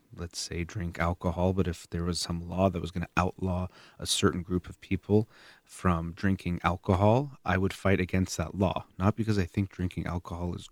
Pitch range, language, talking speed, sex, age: 85-100 Hz, English, 200 wpm, male, 30-49